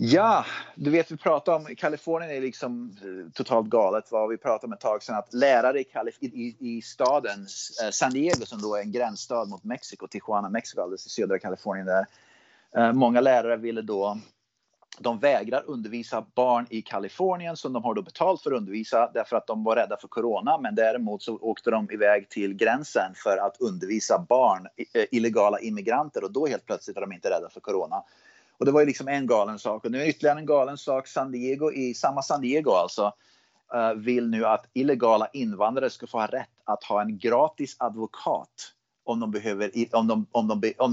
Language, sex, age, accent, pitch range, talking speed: Swedish, male, 30-49, native, 110-135 Hz, 195 wpm